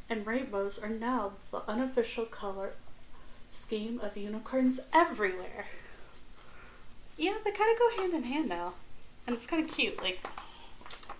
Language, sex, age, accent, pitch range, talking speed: English, female, 30-49, American, 205-265 Hz, 140 wpm